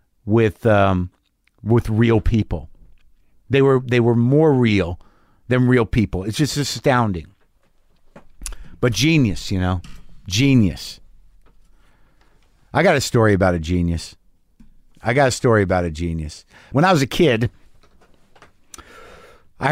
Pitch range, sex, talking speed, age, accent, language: 100-145 Hz, male, 130 wpm, 50-69, American, English